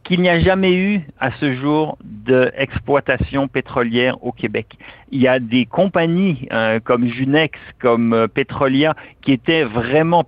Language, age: French, 50-69